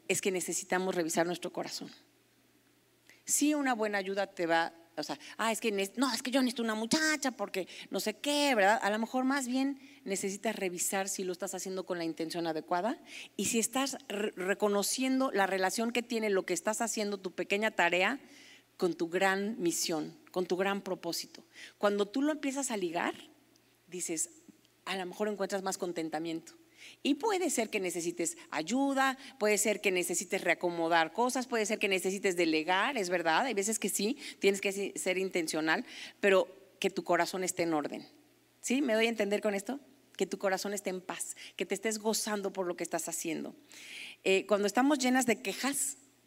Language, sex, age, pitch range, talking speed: Spanish, female, 40-59, 185-245 Hz, 185 wpm